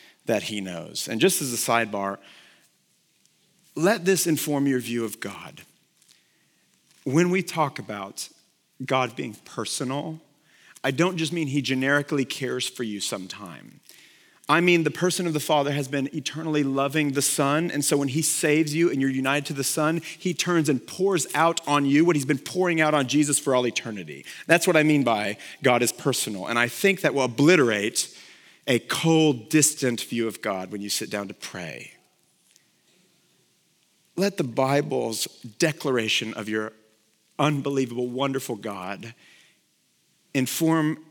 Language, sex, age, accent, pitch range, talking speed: English, male, 40-59, American, 120-155 Hz, 160 wpm